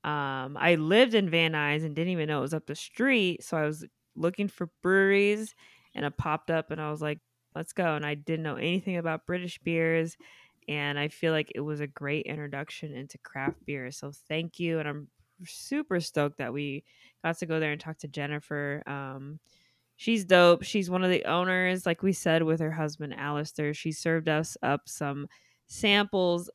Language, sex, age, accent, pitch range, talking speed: English, female, 20-39, American, 150-175 Hz, 200 wpm